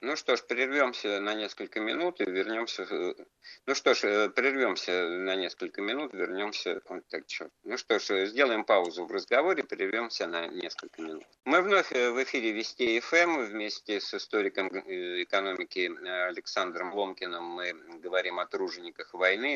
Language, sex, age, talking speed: Russian, male, 50-69, 140 wpm